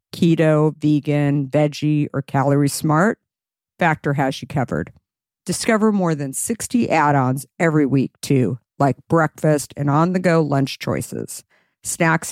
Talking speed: 120 wpm